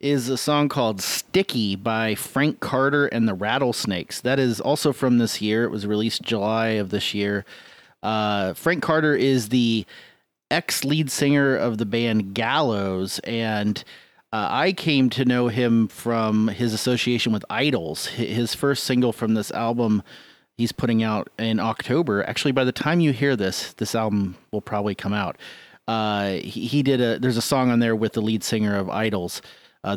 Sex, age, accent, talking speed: male, 30-49, American, 175 wpm